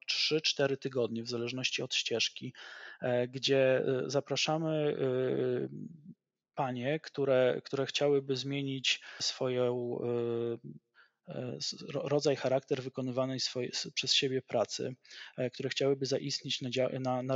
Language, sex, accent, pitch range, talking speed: Polish, male, native, 125-140 Hz, 90 wpm